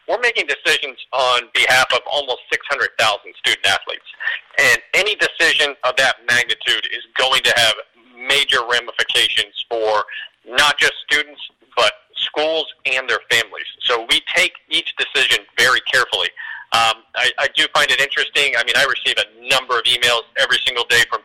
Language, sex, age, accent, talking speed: English, male, 40-59, American, 160 wpm